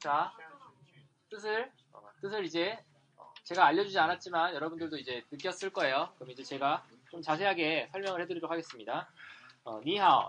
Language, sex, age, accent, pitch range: Korean, male, 20-39, native, 145-205 Hz